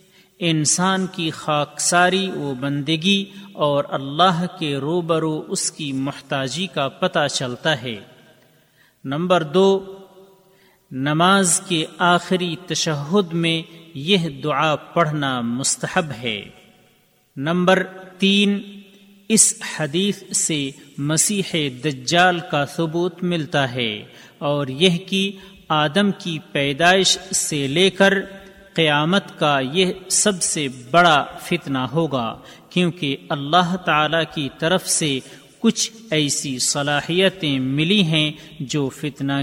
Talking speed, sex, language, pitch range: 105 wpm, male, Urdu, 145-185 Hz